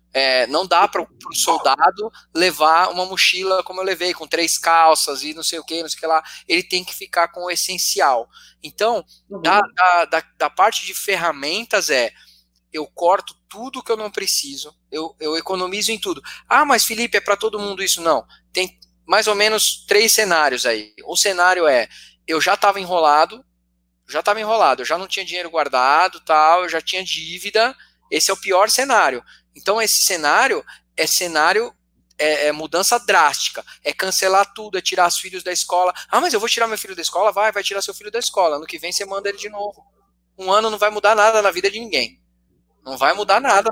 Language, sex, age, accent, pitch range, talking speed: Portuguese, male, 20-39, Brazilian, 160-205 Hz, 205 wpm